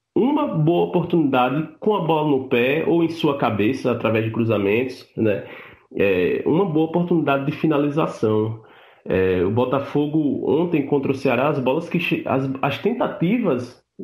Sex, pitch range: male, 130-170 Hz